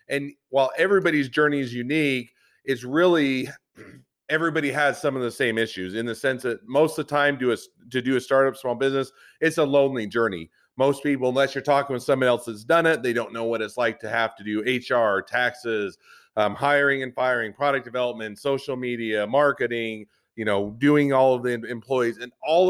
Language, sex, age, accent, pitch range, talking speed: English, male, 40-59, American, 120-140 Hz, 200 wpm